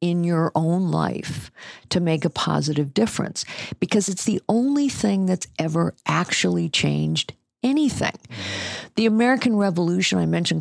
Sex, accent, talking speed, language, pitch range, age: female, American, 135 wpm, English, 145-190 Hz, 50-69